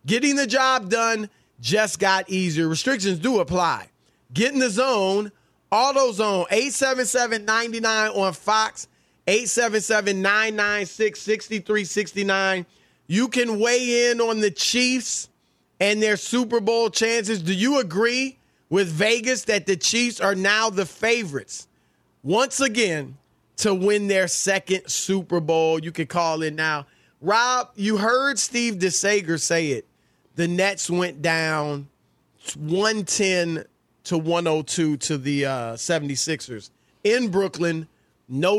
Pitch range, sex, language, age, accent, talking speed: 155-220 Hz, male, English, 30-49, American, 120 wpm